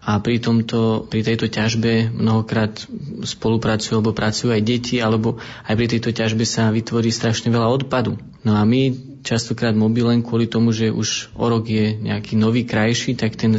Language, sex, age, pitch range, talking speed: Slovak, male, 20-39, 110-120 Hz, 175 wpm